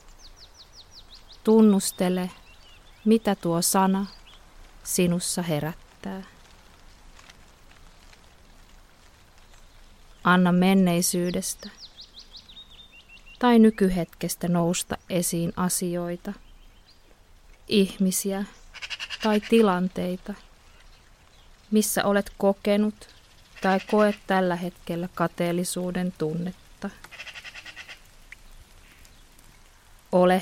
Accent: native